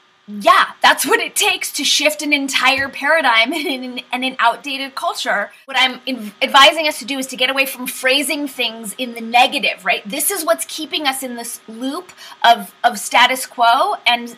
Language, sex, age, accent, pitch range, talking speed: English, female, 20-39, American, 230-275 Hz, 190 wpm